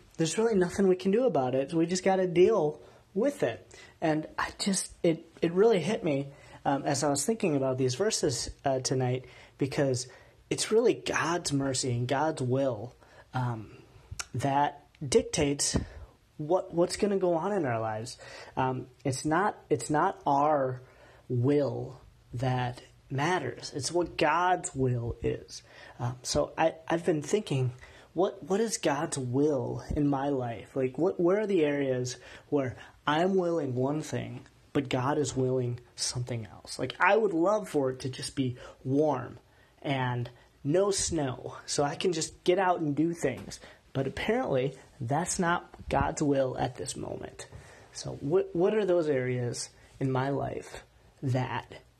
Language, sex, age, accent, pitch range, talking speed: English, male, 30-49, American, 130-170 Hz, 160 wpm